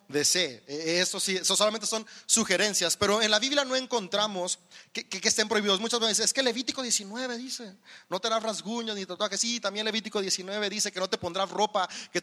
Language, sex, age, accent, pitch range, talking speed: Spanish, male, 30-49, Mexican, 180-220 Hz, 205 wpm